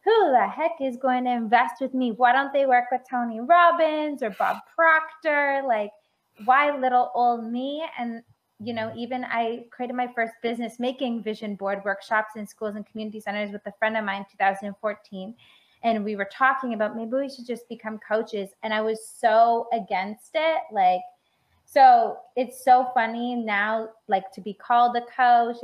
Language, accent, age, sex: English, American, 20-39, female